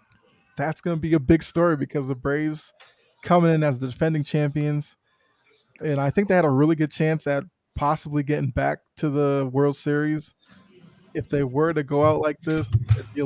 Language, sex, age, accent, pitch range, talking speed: English, male, 20-39, American, 140-165 Hz, 200 wpm